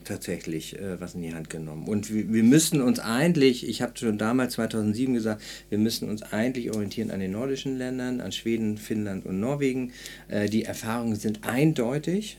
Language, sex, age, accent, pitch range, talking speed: German, male, 40-59, German, 105-130 Hz, 185 wpm